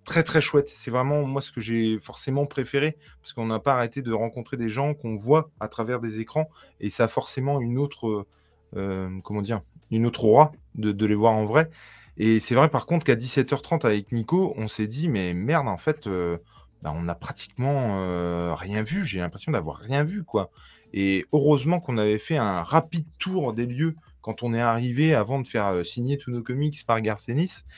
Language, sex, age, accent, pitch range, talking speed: French, male, 20-39, French, 100-145 Hz, 210 wpm